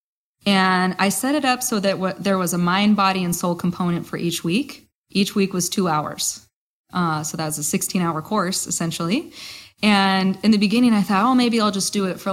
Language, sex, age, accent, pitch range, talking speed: English, female, 20-39, American, 175-215 Hz, 220 wpm